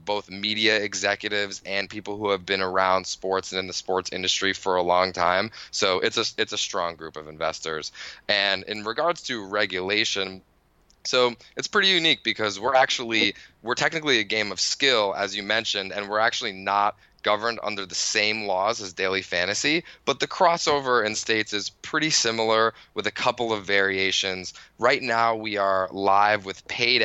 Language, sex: English, male